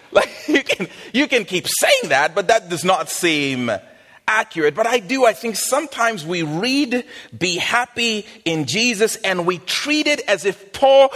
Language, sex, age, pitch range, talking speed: English, male, 40-59, 180-255 Hz, 175 wpm